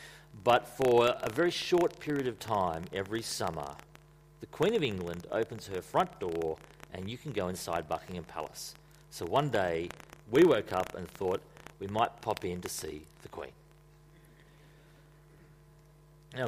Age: 40-59